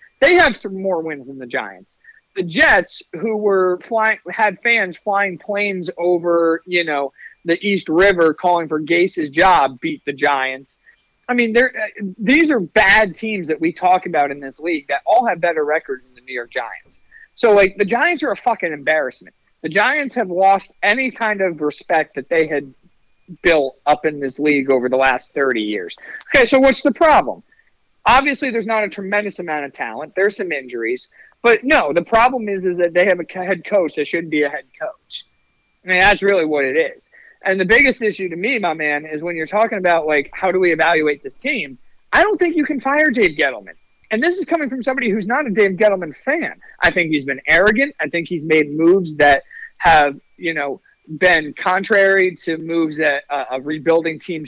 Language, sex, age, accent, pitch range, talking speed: English, male, 40-59, American, 155-230 Hz, 205 wpm